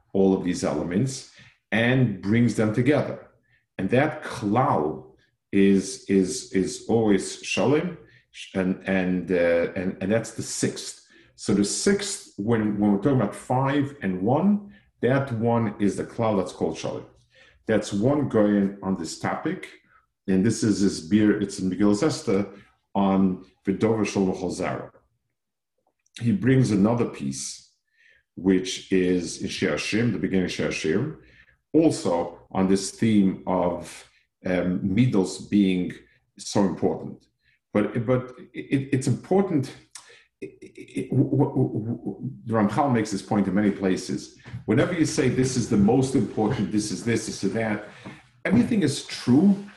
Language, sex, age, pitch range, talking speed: English, male, 50-69, 95-130 Hz, 145 wpm